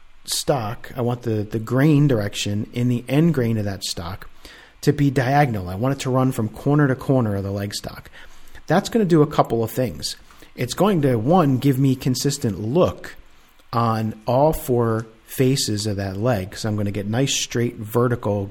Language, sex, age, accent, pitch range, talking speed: English, male, 40-59, American, 110-140 Hz, 200 wpm